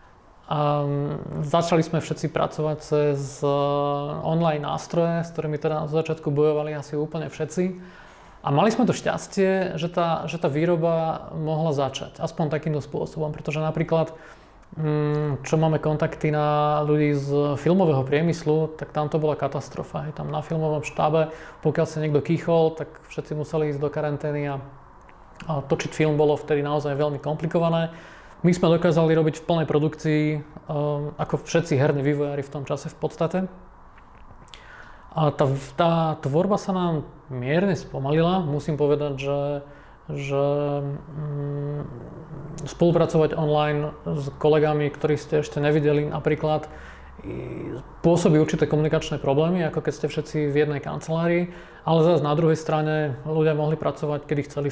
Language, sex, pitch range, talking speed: Czech, male, 145-160 Hz, 145 wpm